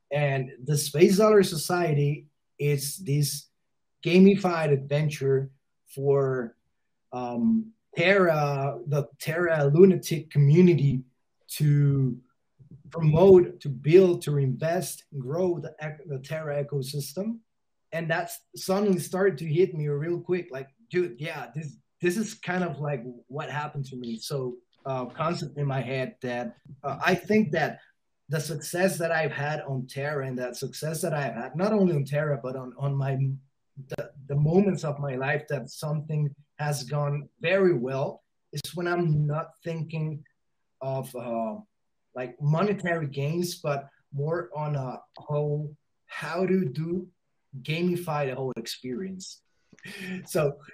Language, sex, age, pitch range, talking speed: English, male, 20-39, 140-175 Hz, 135 wpm